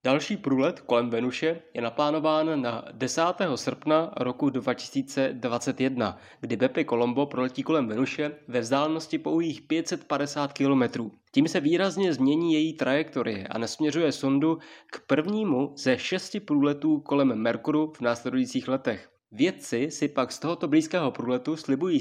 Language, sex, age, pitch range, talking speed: Czech, male, 20-39, 130-165 Hz, 135 wpm